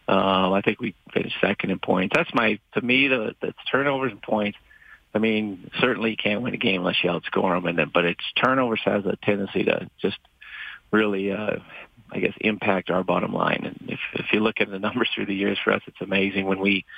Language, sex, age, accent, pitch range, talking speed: English, male, 40-59, American, 100-115 Hz, 225 wpm